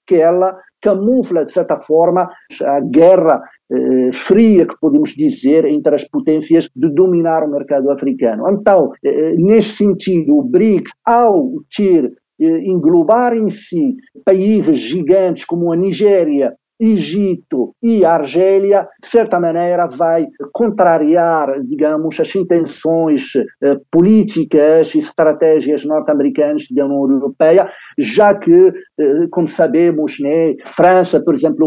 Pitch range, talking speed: 155-210 Hz, 125 wpm